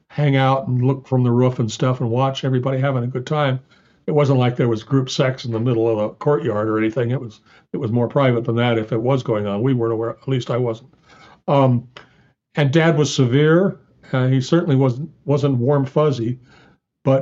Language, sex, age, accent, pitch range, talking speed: English, male, 60-79, American, 125-150 Hz, 225 wpm